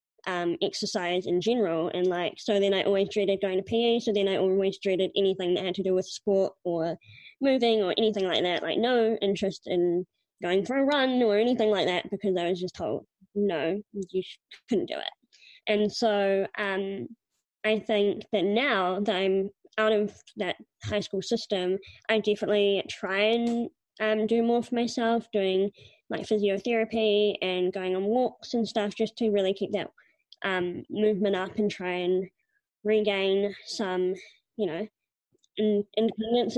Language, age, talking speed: English, 20-39, 170 wpm